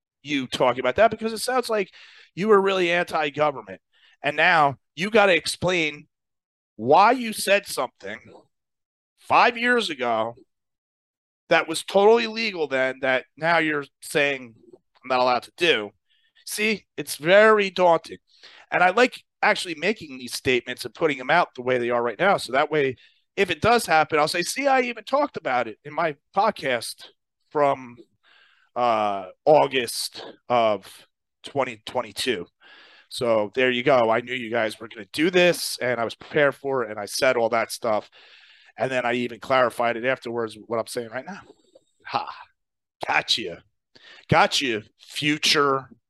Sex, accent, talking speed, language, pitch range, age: male, American, 165 wpm, English, 125-185 Hz, 30-49